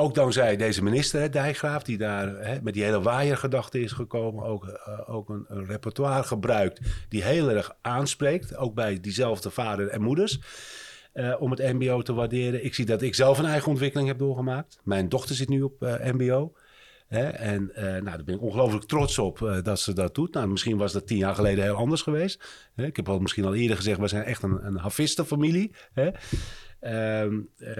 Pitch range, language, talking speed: 105-140 Hz, Dutch, 205 wpm